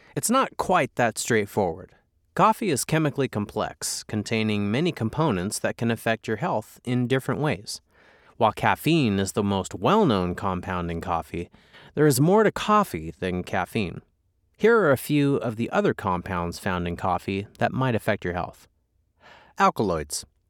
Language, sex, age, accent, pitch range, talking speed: English, male, 30-49, American, 95-145 Hz, 155 wpm